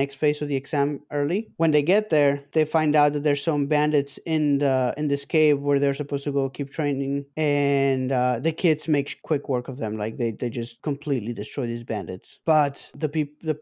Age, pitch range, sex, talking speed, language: 20-39, 135-155 Hz, male, 220 wpm, English